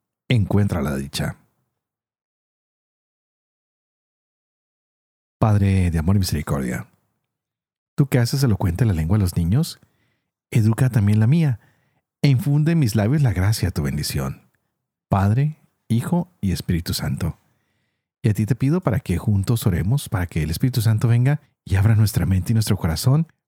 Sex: male